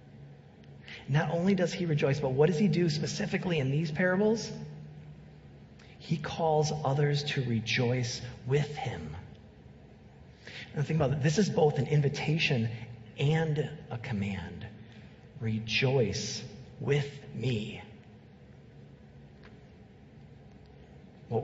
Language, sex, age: English, male, 40-59